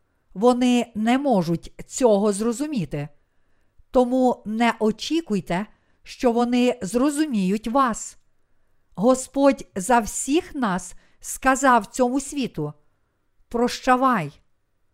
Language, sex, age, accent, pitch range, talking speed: Ukrainian, female, 50-69, native, 145-245 Hz, 80 wpm